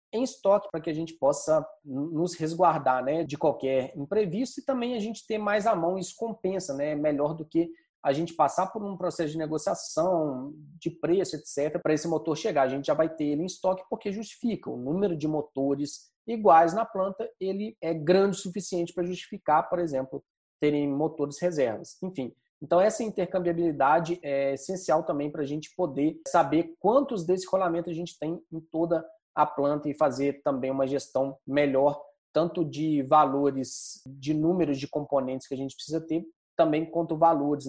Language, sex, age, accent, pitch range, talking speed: Portuguese, male, 20-39, Brazilian, 145-185 Hz, 185 wpm